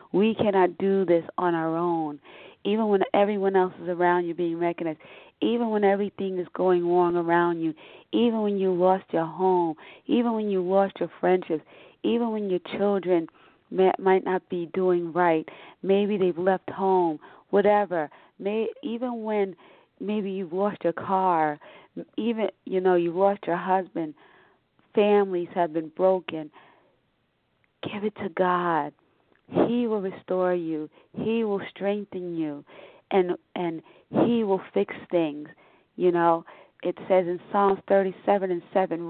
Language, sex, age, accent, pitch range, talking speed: English, female, 40-59, American, 175-200 Hz, 150 wpm